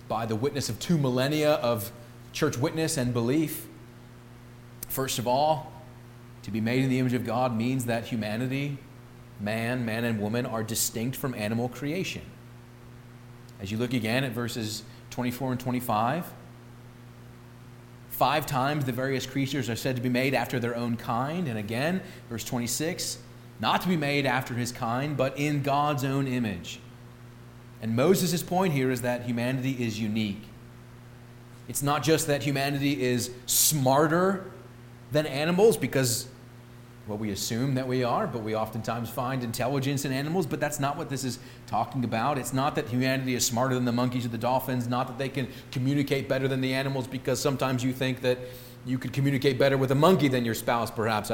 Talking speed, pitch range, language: 175 wpm, 120-135 Hz, English